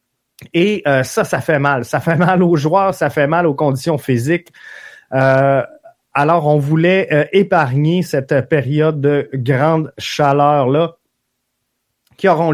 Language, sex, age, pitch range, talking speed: French, male, 30-49, 140-180 Hz, 145 wpm